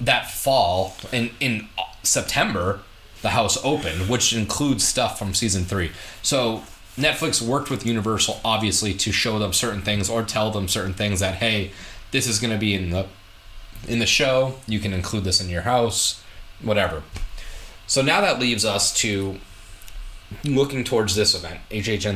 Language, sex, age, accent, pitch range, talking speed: English, male, 20-39, American, 95-115 Hz, 165 wpm